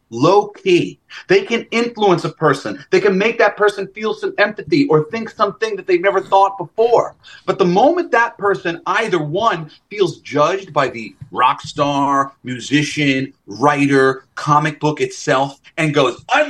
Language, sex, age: English, male, 30-49